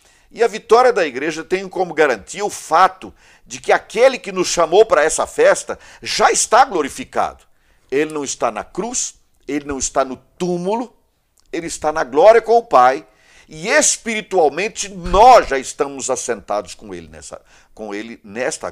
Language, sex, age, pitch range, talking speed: Portuguese, male, 50-69, 130-205 Hz, 155 wpm